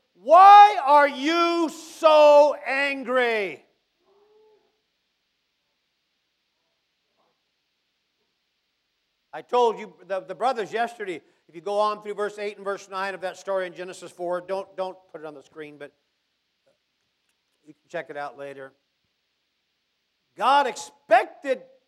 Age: 50-69